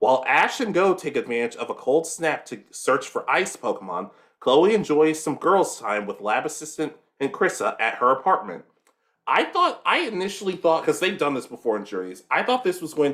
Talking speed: 205 wpm